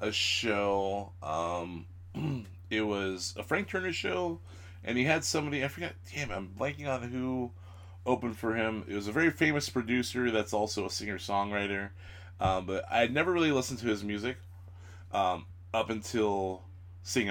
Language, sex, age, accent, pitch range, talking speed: English, male, 20-39, American, 95-115 Hz, 165 wpm